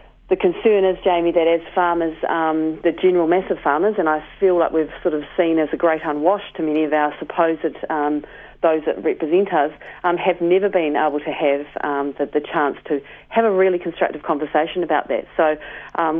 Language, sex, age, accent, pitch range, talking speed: English, female, 40-59, Australian, 155-185 Hz, 205 wpm